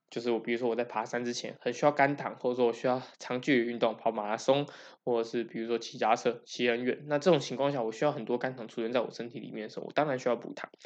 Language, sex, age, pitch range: Chinese, male, 10-29, 115-140 Hz